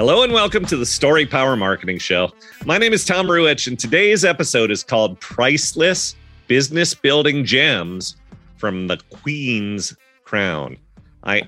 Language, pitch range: English, 100-140 Hz